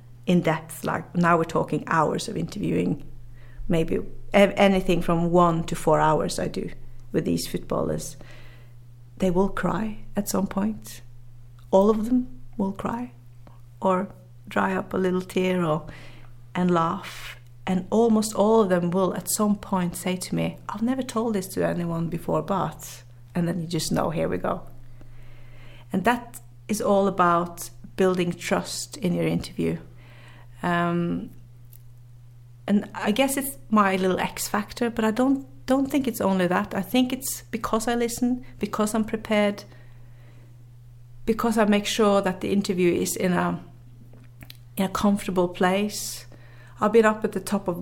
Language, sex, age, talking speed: English, female, 30-49, 160 wpm